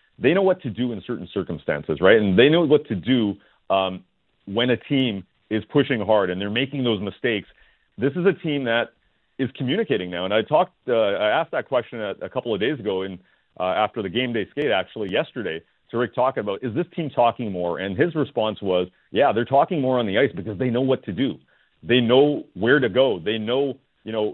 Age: 40-59